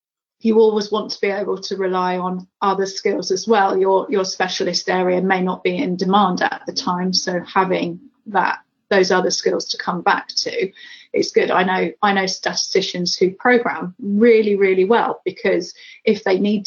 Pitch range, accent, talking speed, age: 190-250 Hz, British, 185 wpm, 30-49